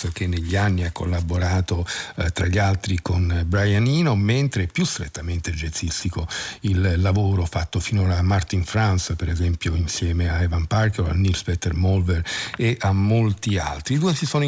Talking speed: 170 wpm